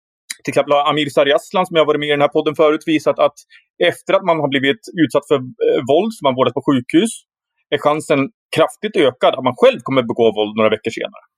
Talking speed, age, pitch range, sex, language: 220 wpm, 30-49, 135-190 Hz, male, Swedish